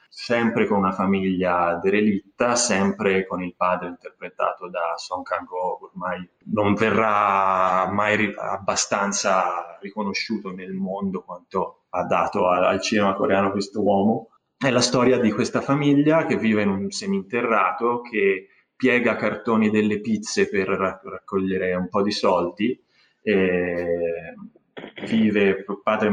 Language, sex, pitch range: Italian, male, 95-115 Hz